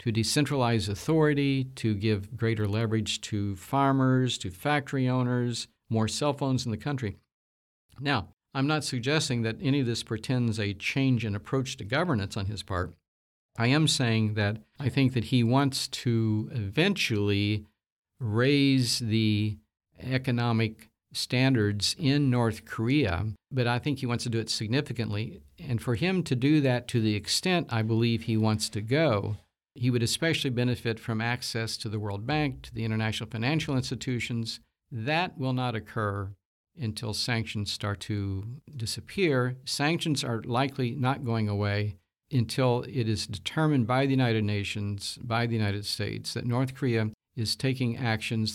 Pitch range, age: 110-130 Hz, 50-69